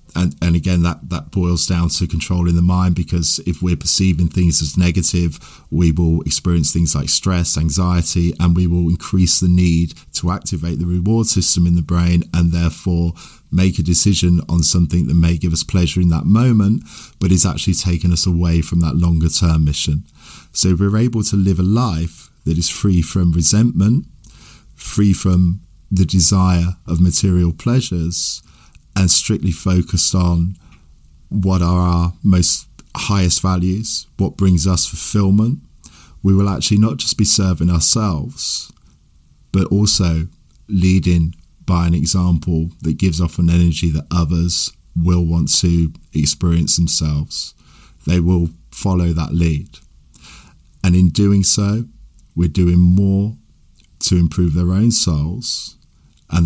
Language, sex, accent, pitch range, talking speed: English, male, British, 80-95 Hz, 150 wpm